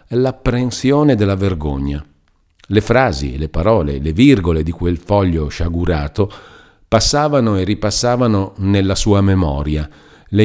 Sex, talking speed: male, 115 wpm